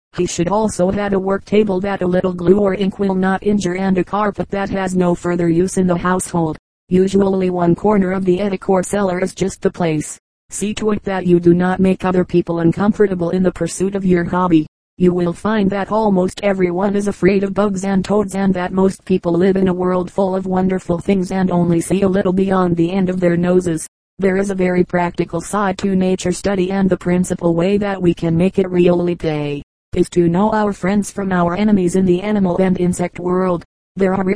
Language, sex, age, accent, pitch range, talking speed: English, female, 40-59, American, 175-195 Hz, 220 wpm